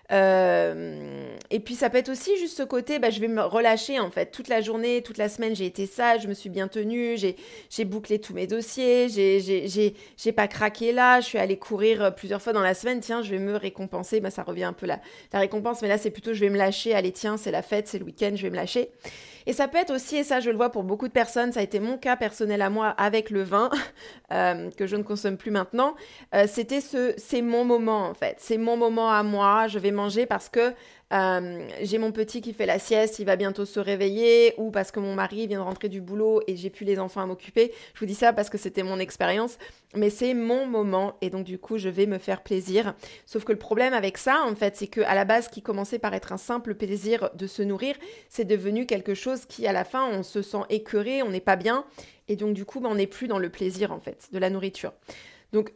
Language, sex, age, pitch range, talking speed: French, female, 30-49, 200-235 Hz, 255 wpm